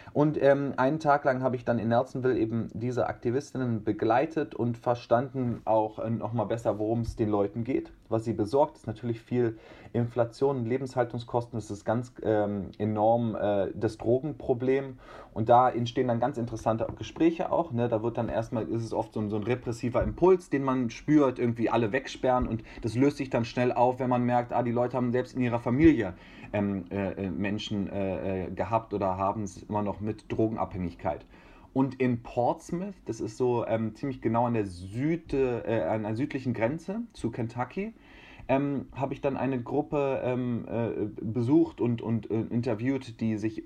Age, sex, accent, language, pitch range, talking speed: 30-49, male, German, German, 110-130 Hz, 185 wpm